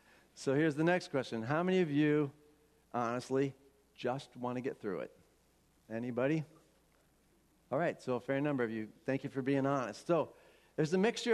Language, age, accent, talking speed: English, 50-69, American, 180 wpm